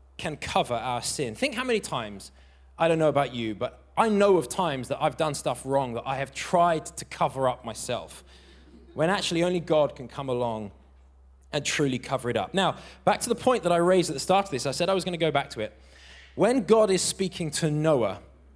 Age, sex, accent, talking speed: 20-39, male, British, 235 wpm